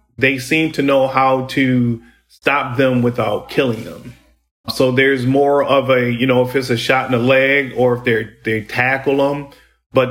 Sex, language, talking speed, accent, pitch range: male, English, 190 wpm, American, 120-130 Hz